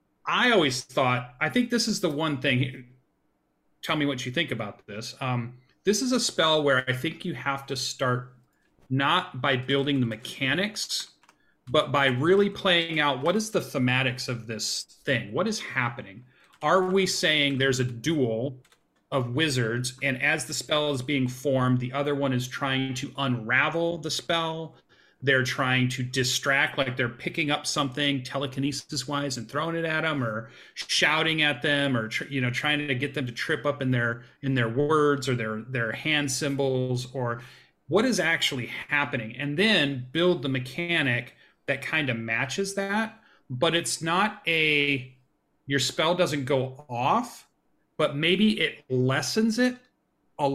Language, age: English, 30-49